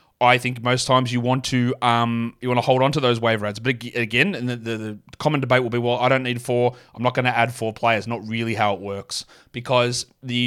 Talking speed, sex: 265 wpm, male